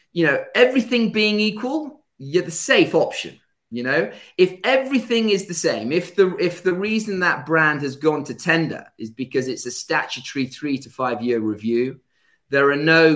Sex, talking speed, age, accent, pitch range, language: male, 180 wpm, 30-49, British, 130-210 Hz, English